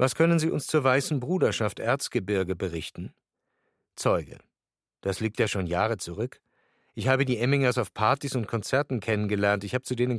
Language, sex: German, male